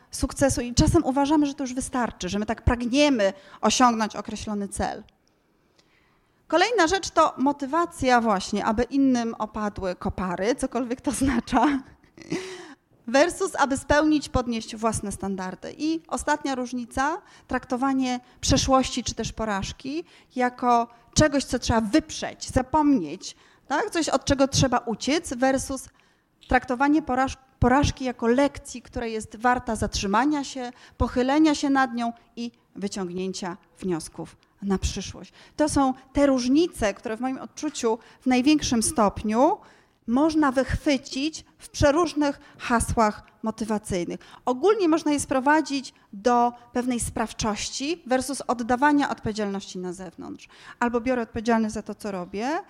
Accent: native